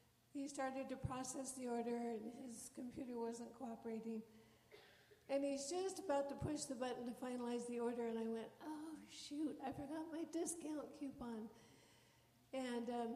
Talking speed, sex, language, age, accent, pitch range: 160 wpm, female, English, 60-79, American, 230-280 Hz